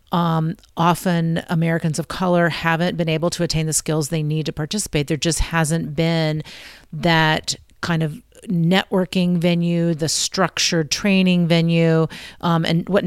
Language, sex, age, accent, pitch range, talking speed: English, female, 40-59, American, 155-175 Hz, 145 wpm